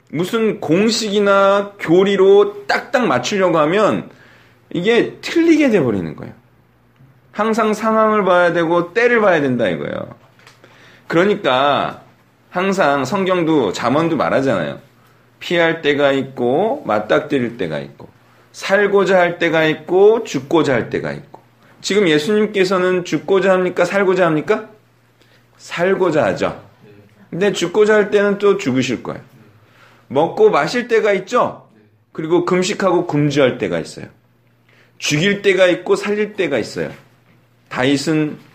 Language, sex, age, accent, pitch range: Korean, male, 40-59, native, 150-210 Hz